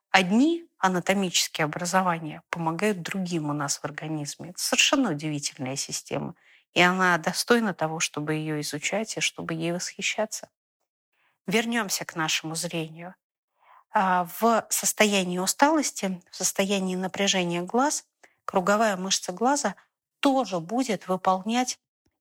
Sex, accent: female, native